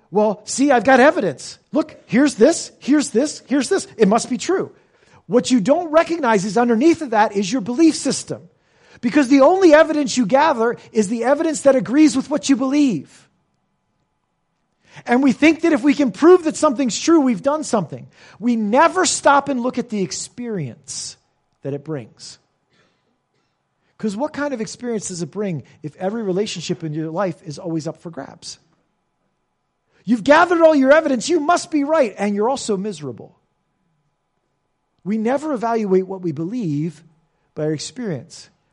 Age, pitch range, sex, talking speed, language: 40-59, 160-265 Hz, male, 170 wpm, English